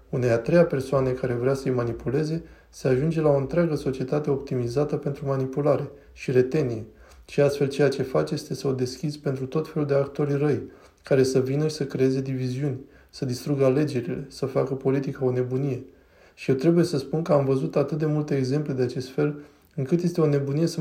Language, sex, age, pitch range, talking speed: Romanian, male, 20-39, 130-150 Hz, 195 wpm